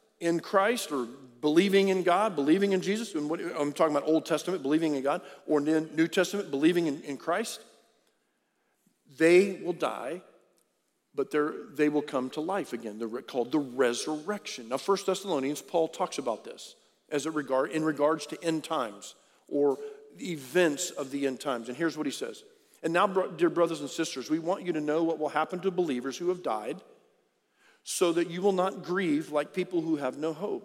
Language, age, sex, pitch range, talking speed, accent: English, 50-69, male, 150-200 Hz, 190 wpm, American